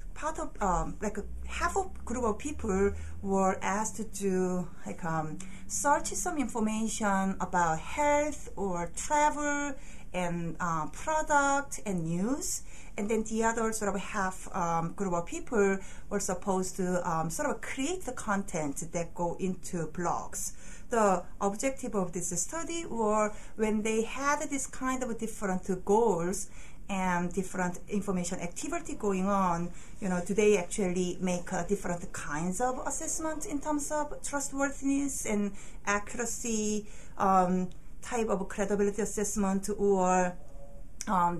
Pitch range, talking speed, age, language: 180-245 Hz, 140 wpm, 40-59, English